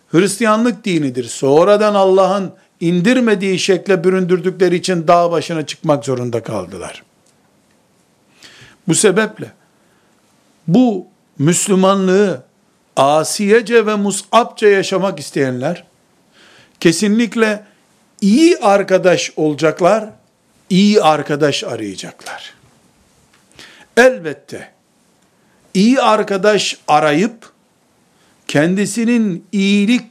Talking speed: 70 wpm